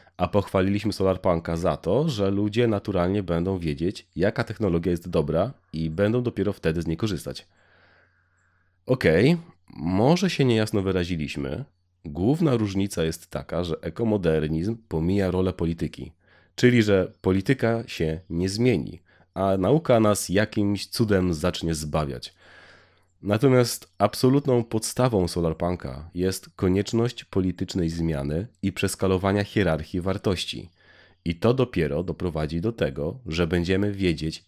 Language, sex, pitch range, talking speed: Polish, male, 85-105 Hz, 120 wpm